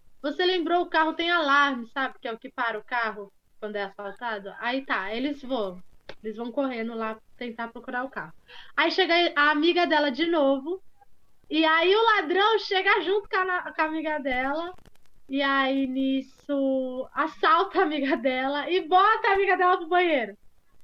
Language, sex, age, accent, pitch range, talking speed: Portuguese, female, 10-29, Brazilian, 260-355 Hz, 180 wpm